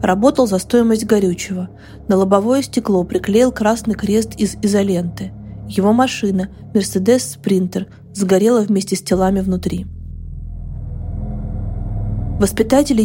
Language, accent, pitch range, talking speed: Russian, native, 185-240 Hz, 95 wpm